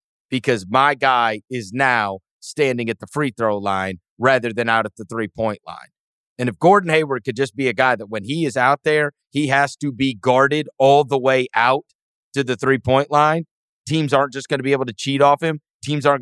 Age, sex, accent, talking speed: 30-49, male, American, 220 wpm